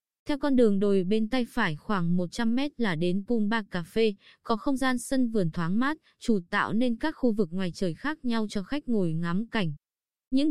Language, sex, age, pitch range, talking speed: Vietnamese, female, 20-39, 195-250 Hz, 205 wpm